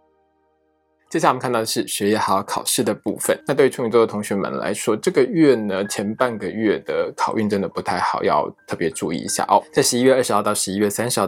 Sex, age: male, 20-39